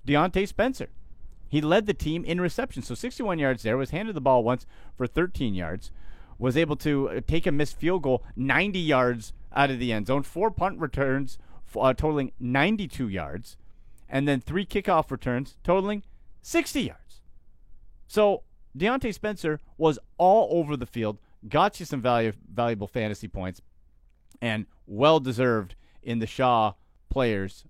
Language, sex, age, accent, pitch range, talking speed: English, male, 40-59, American, 110-165 Hz, 150 wpm